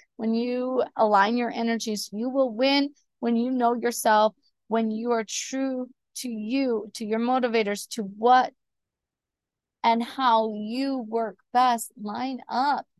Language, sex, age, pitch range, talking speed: English, female, 20-39, 205-245 Hz, 140 wpm